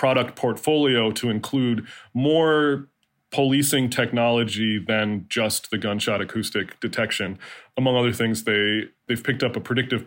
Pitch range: 110-135 Hz